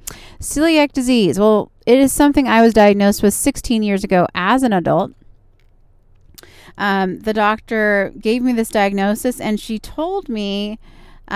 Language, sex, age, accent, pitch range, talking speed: English, female, 30-49, American, 180-230 Hz, 150 wpm